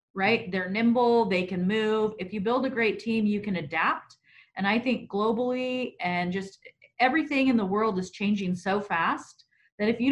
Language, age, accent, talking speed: English, 30-49, American, 190 wpm